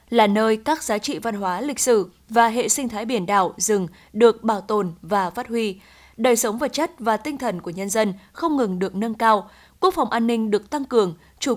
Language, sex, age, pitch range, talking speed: Vietnamese, female, 20-39, 205-255 Hz, 235 wpm